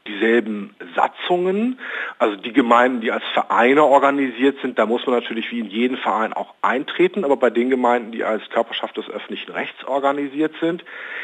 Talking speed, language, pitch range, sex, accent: 170 wpm, German, 115-160 Hz, male, German